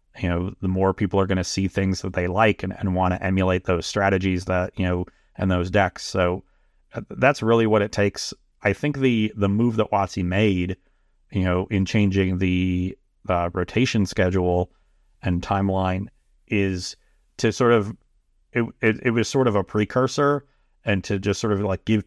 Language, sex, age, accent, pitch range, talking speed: English, male, 30-49, American, 95-110 Hz, 190 wpm